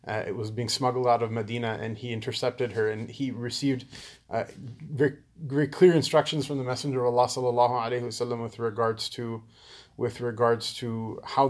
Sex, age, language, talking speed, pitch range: male, 30-49, English, 160 wpm, 120-140 Hz